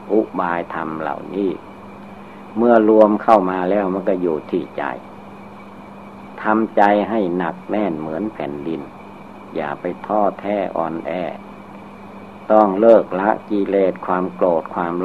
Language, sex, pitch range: Thai, male, 90-105 Hz